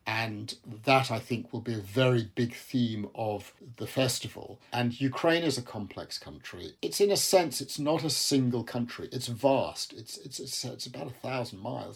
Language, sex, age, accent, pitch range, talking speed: English, male, 50-69, British, 115-135 Hz, 190 wpm